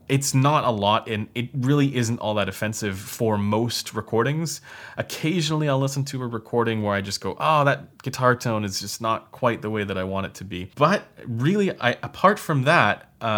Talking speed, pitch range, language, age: 200 wpm, 105-135 Hz, English, 20-39